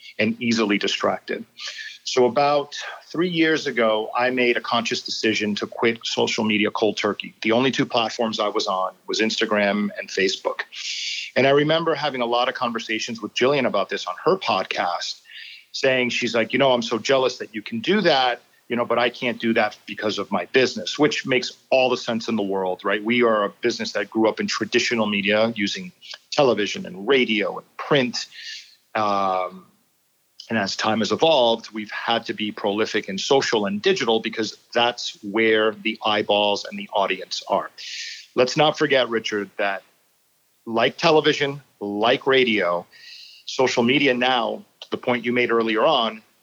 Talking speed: 175 wpm